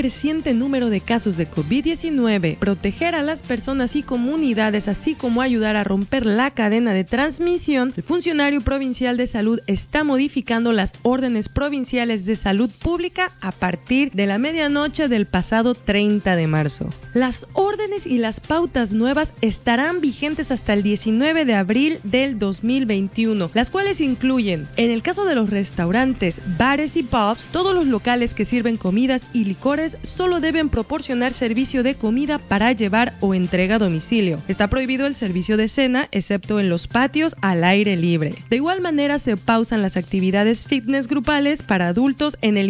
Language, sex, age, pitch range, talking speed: English, female, 30-49, 205-280 Hz, 165 wpm